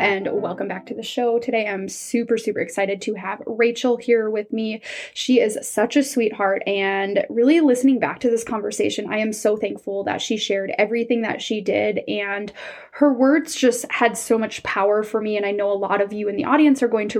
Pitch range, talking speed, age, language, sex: 205-245 Hz, 220 wpm, 10-29, English, female